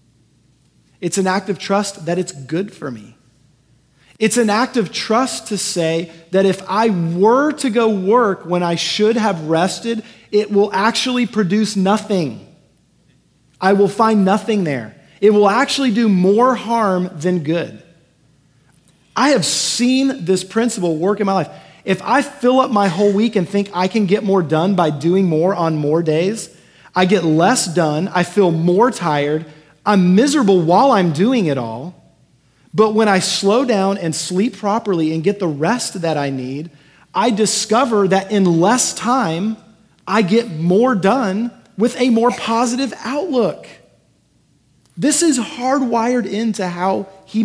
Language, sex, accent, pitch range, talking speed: English, male, American, 165-220 Hz, 160 wpm